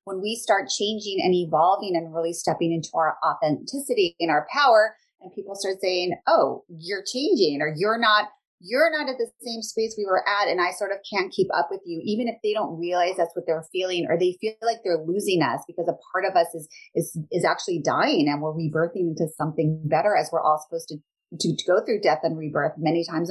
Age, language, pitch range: 30-49, English, 170-225 Hz